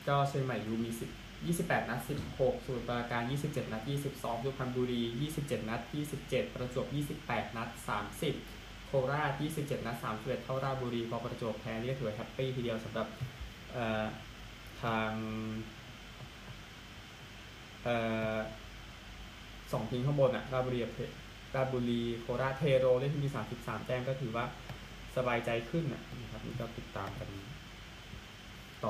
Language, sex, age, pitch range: Thai, male, 20-39, 110-130 Hz